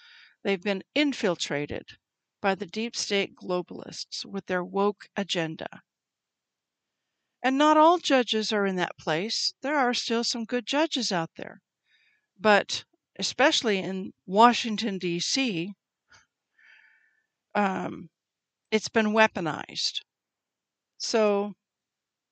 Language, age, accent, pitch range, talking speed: English, 60-79, American, 185-230 Hz, 100 wpm